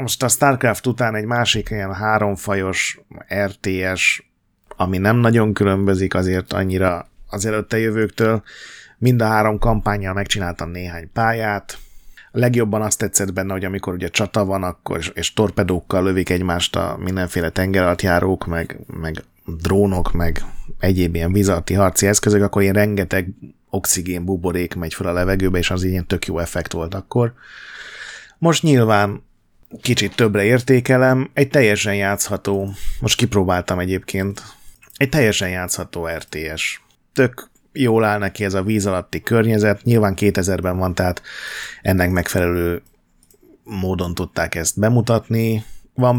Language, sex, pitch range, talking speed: Hungarian, male, 90-110 Hz, 135 wpm